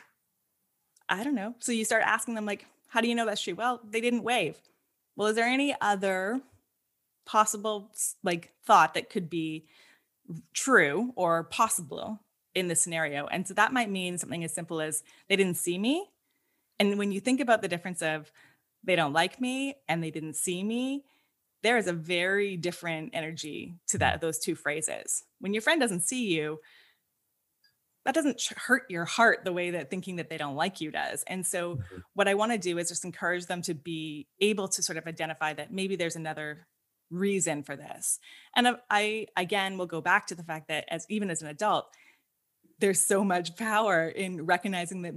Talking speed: 195 wpm